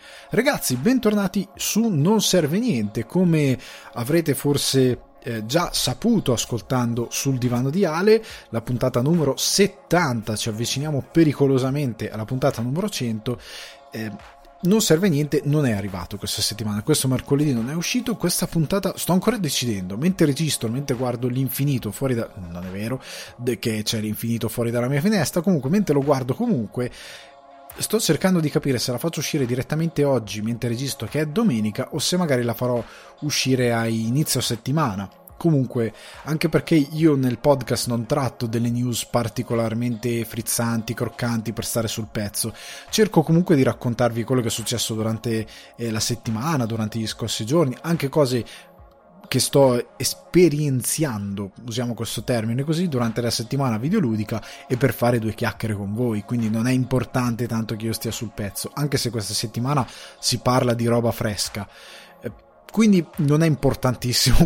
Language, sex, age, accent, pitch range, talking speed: Italian, male, 20-39, native, 115-150 Hz, 155 wpm